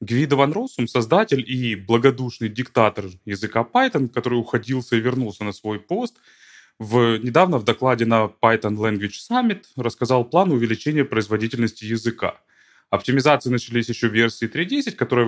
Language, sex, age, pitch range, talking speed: Ukrainian, male, 20-39, 110-130 Hz, 140 wpm